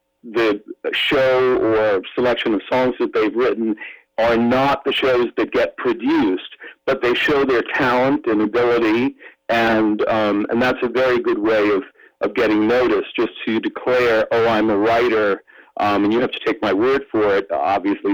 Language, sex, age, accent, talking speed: English, male, 50-69, American, 175 wpm